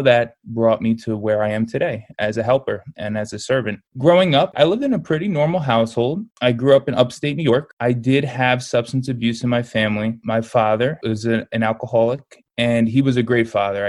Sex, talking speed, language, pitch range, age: male, 215 wpm, English, 110-130 Hz, 20-39